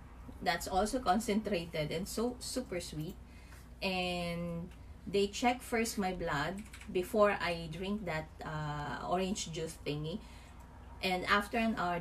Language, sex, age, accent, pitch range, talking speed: English, female, 20-39, Filipino, 155-190 Hz, 125 wpm